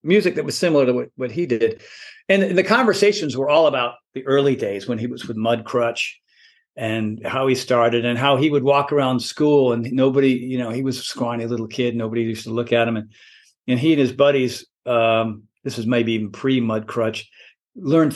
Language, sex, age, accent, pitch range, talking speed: English, male, 50-69, American, 115-155 Hz, 220 wpm